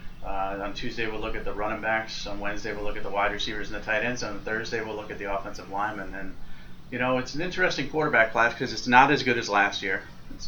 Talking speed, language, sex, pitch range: 265 wpm, English, male, 100-115 Hz